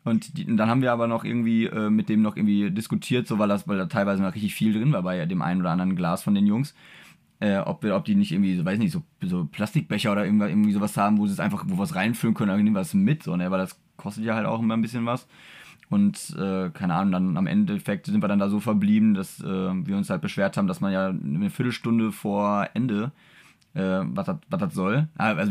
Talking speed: 255 wpm